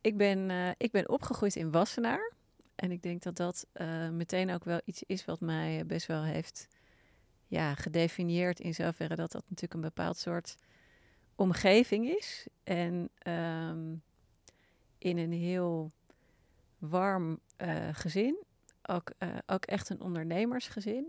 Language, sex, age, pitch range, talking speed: Dutch, female, 40-59, 165-195 Hz, 140 wpm